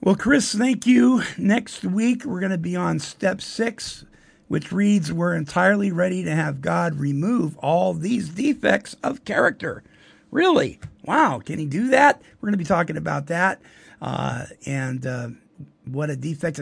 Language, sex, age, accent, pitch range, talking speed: English, male, 50-69, American, 140-180 Hz, 165 wpm